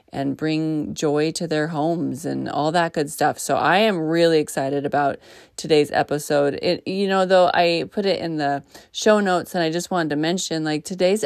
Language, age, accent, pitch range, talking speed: English, 30-49, American, 145-170 Hz, 200 wpm